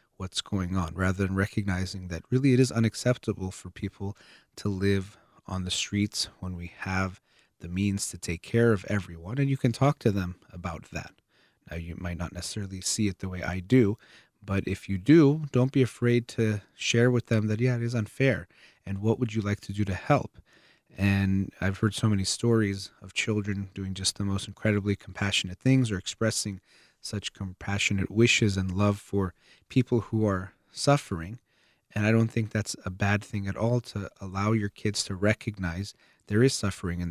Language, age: English, 30-49